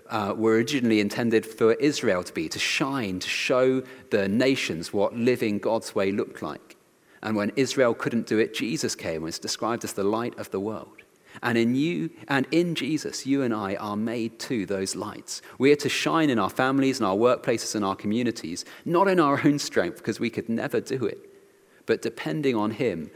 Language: English